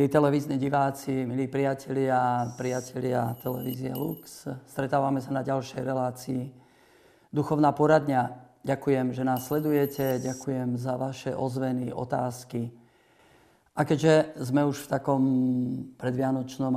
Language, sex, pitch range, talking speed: Slovak, male, 125-140 Hz, 110 wpm